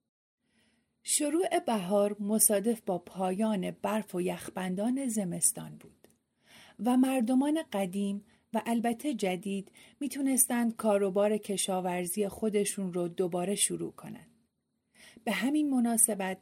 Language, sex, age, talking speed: Persian, female, 40-59, 100 wpm